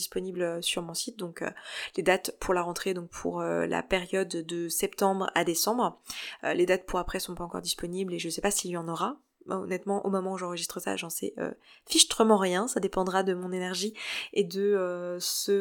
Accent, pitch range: French, 175-210 Hz